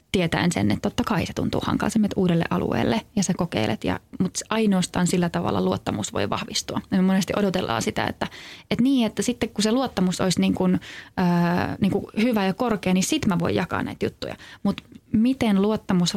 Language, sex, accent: Finnish, female, native